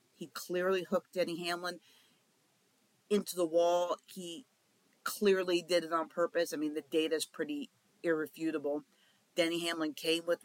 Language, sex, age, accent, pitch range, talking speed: English, female, 50-69, American, 160-195 Hz, 145 wpm